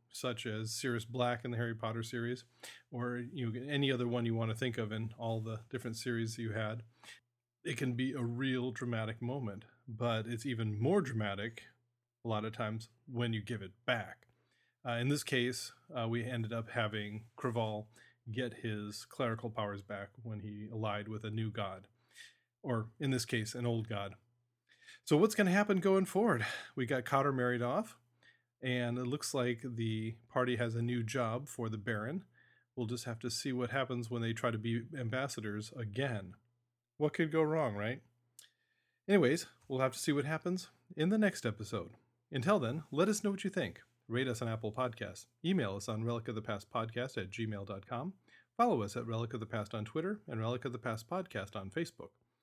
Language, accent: English, American